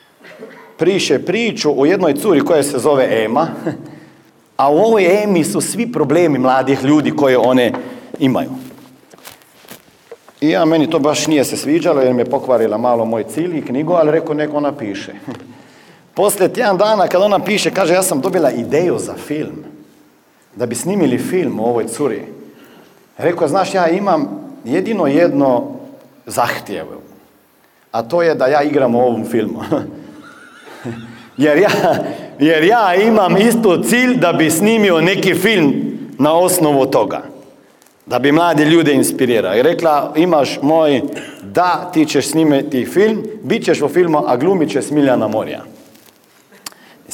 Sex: male